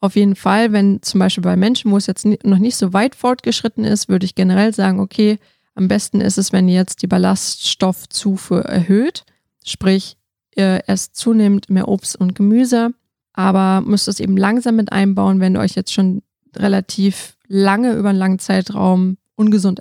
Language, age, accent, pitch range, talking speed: German, 20-39, German, 190-215 Hz, 175 wpm